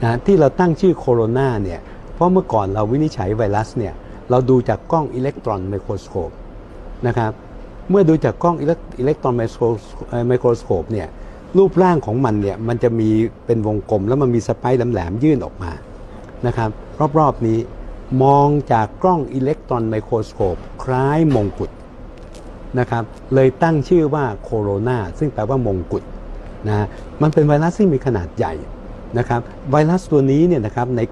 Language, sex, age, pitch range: Thai, male, 60-79, 105-135 Hz